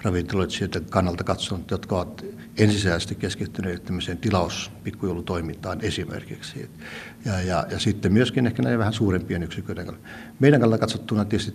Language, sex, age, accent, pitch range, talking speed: Finnish, male, 60-79, native, 90-110 Hz, 130 wpm